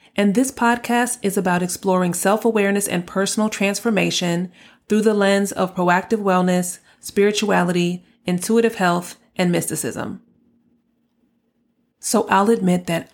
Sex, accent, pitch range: female, American, 180-225 Hz